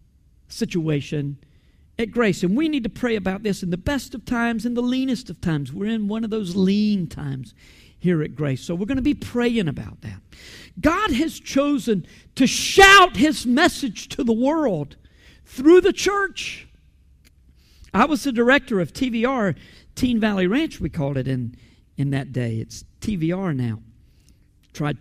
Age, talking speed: 50-69, 170 wpm